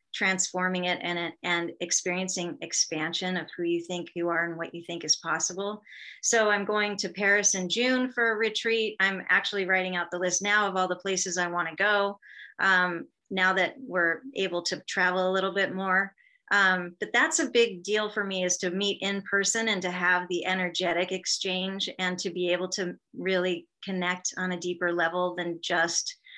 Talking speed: 195 wpm